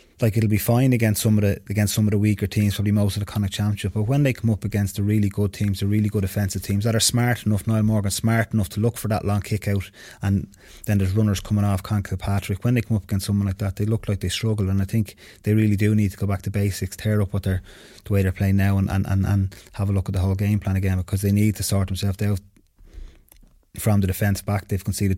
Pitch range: 100-105 Hz